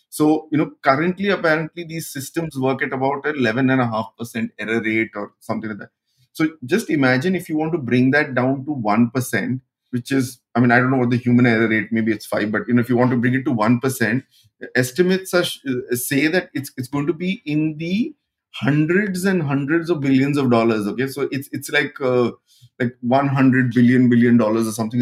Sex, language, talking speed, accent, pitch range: male, English, 225 wpm, Indian, 125-150 Hz